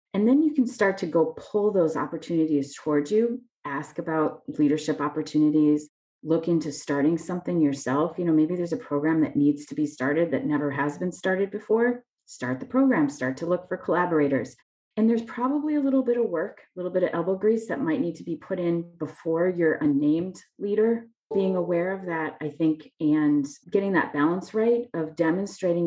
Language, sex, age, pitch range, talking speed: English, female, 30-49, 150-205 Hz, 195 wpm